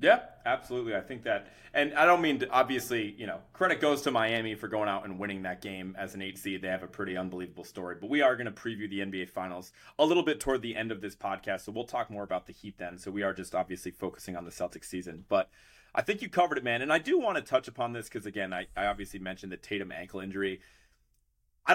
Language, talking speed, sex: English, 260 wpm, male